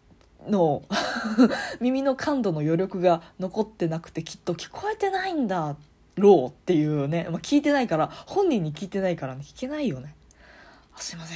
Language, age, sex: Japanese, 20-39, female